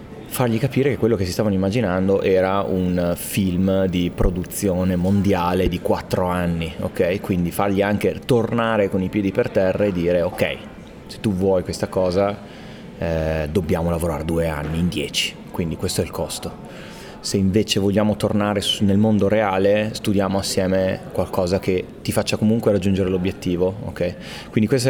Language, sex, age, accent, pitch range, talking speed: Italian, male, 30-49, native, 90-105 Hz, 160 wpm